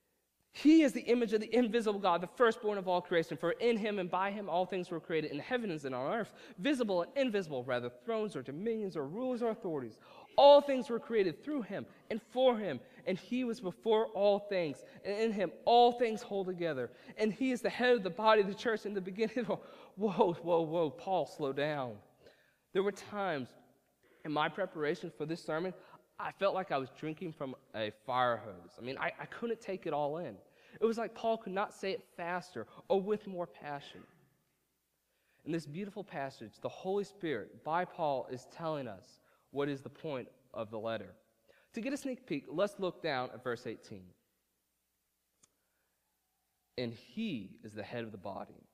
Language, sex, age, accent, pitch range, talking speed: English, male, 20-39, American, 130-215 Hz, 200 wpm